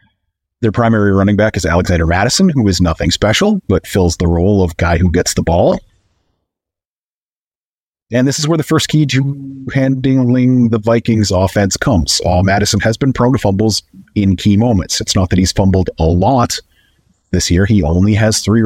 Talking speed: 185 wpm